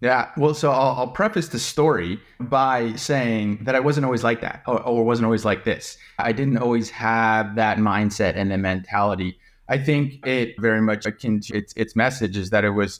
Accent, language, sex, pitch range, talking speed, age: American, English, male, 105-125 Hz, 210 wpm, 30-49